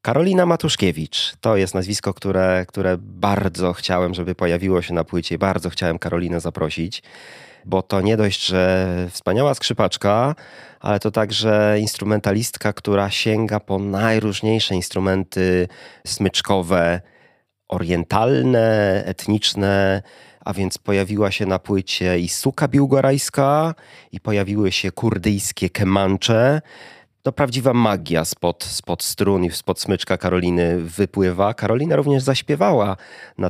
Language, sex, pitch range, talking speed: Polish, male, 95-115 Hz, 120 wpm